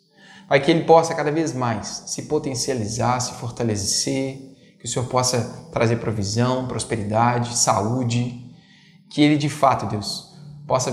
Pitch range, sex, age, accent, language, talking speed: 120-160 Hz, male, 20-39, Brazilian, Portuguese, 135 wpm